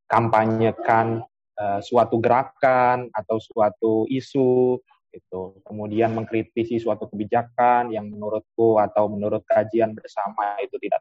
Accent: native